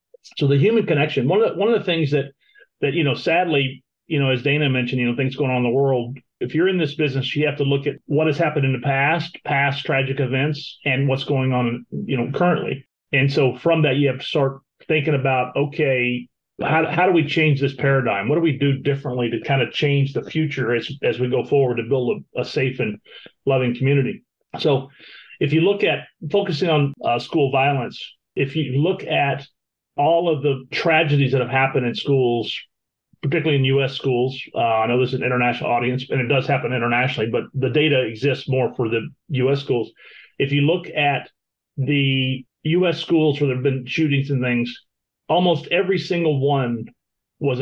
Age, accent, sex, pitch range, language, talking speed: 40-59, American, male, 130-155 Hz, English, 210 wpm